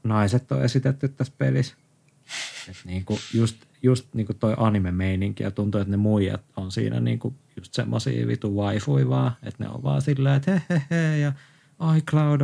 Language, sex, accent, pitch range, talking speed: Finnish, male, native, 105-140 Hz, 175 wpm